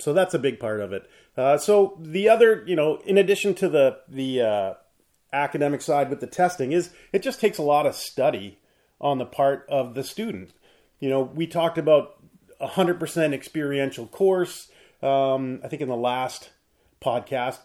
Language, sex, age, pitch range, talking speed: English, male, 30-49, 130-165 Hz, 185 wpm